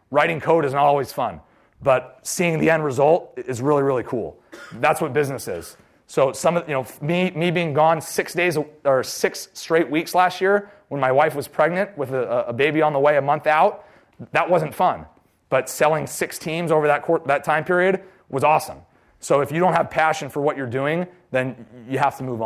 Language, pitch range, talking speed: English, 125-160 Hz, 215 wpm